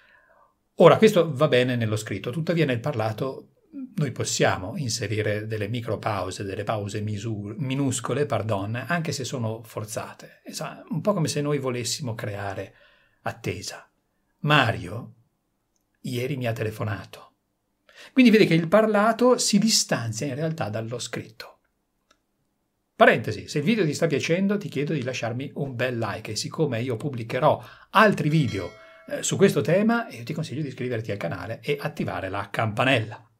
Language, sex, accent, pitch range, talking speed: Italian, male, native, 110-150 Hz, 140 wpm